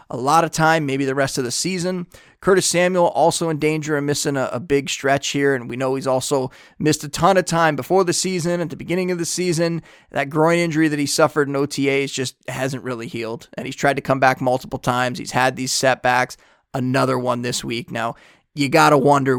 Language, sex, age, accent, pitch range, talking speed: English, male, 20-39, American, 125-150 Hz, 230 wpm